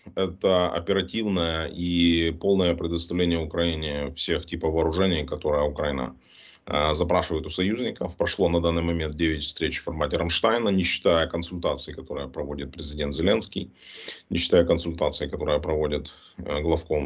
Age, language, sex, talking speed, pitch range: 30-49, Russian, male, 125 wpm, 80-90 Hz